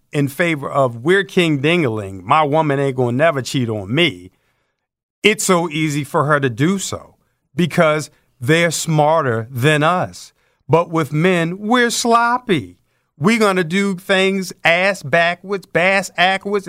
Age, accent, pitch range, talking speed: 50-69, American, 115-170 Hz, 145 wpm